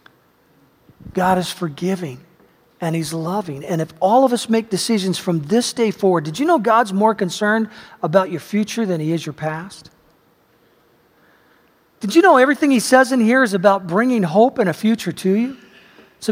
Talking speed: 180 wpm